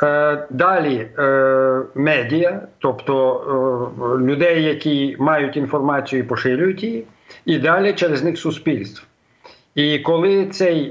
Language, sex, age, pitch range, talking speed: Ukrainian, male, 50-69, 135-170 Hz, 100 wpm